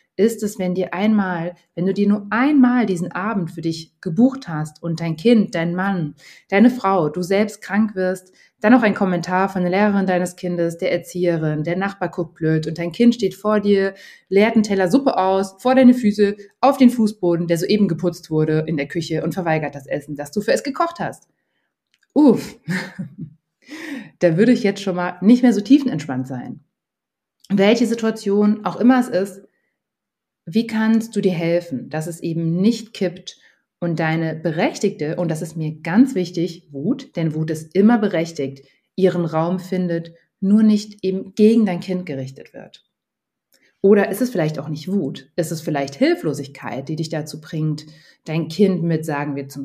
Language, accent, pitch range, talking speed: German, German, 165-210 Hz, 180 wpm